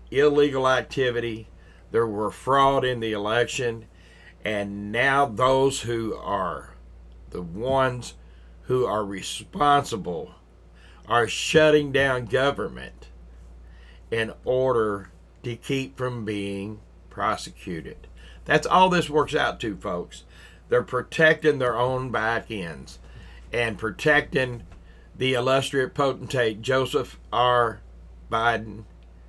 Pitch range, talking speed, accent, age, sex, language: 85-135 Hz, 100 wpm, American, 50-69, male, English